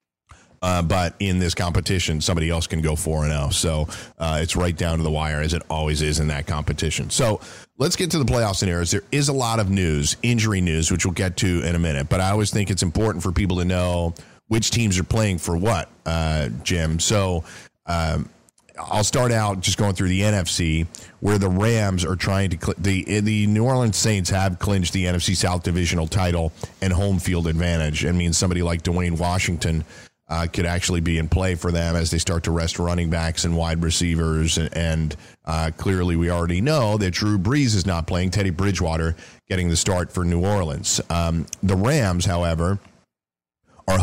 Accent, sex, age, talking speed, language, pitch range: American, male, 40-59, 205 wpm, English, 85-100 Hz